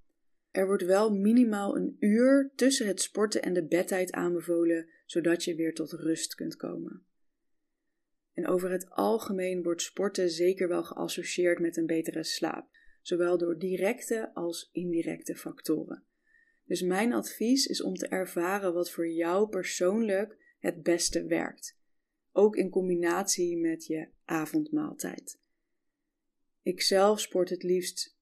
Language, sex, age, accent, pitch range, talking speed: Dutch, female, 20-39, Dutch, 175-255 Hz, 135 wpm